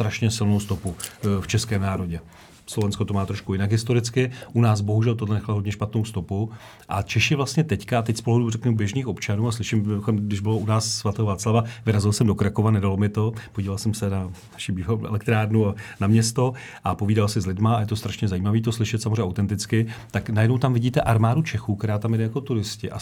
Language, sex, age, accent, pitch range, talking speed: Czech, male, 40-59, native, 100-115 Hz, 205 wpm